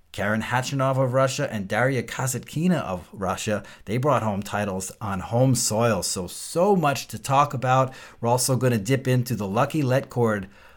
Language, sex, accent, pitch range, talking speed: English, male, American, 110-130 Hz, 175 wpm